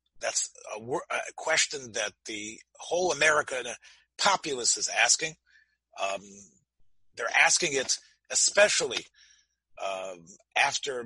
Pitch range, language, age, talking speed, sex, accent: 115-165 Hz, English, 40-59, 100 wpm, male, American